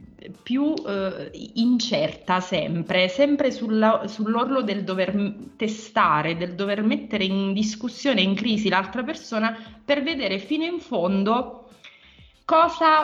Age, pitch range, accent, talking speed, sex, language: 30-49, 180-230 Hz, native, 110 wpm, female, Italian